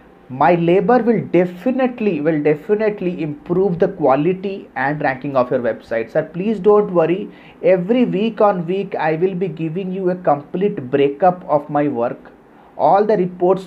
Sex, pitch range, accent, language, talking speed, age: male, 140-180 Hz, native, Hindi, 160 wpm, 30-49